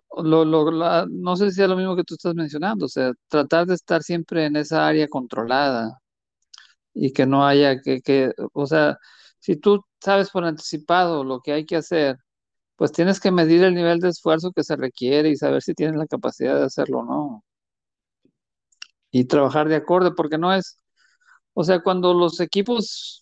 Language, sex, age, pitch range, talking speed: Spanish, male, 50-69, 145-180 Hz, 190 wpm